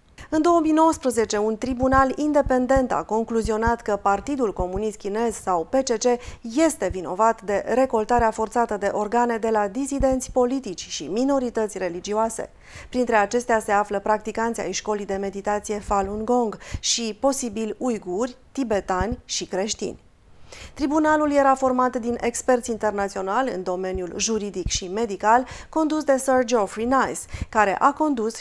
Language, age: Romanian, 30-49